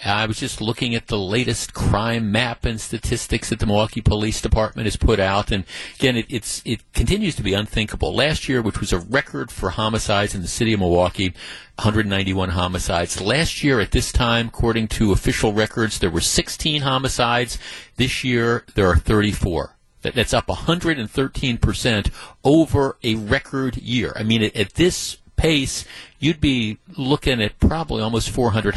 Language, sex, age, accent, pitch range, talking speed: English, male, 50-69, American, 100-125 Hz, 170 wpm